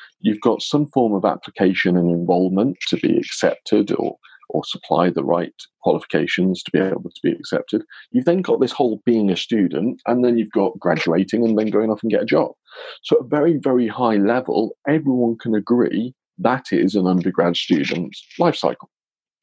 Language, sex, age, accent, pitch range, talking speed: English, male, 40-59, British, 95-120 Hz, 190 wpm